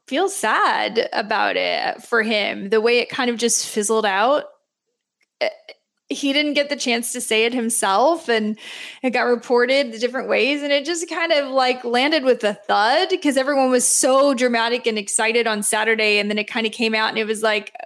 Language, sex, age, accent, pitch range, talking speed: English, female, 20-39, American, 225-300 Hz, 200 wpm